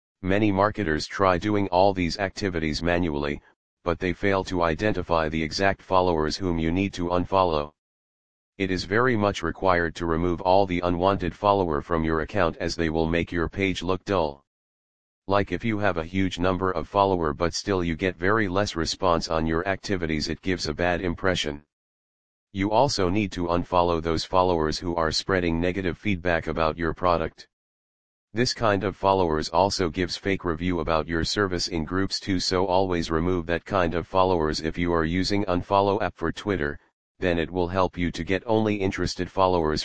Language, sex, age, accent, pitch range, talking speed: English, male, 40-59, American, 80-95 Hz, 180 wpm